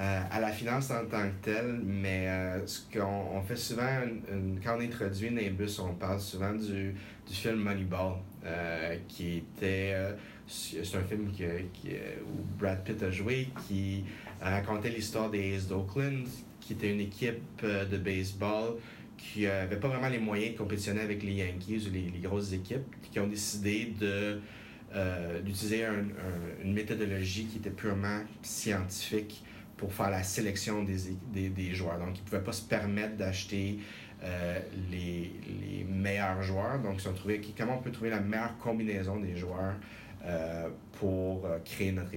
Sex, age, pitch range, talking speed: male, 30-49, 95-110 Hz, 160 wpm